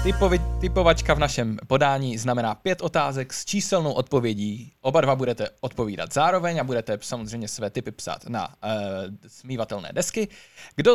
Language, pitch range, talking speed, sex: Czech, 115-170 Hz, 150 wpm, male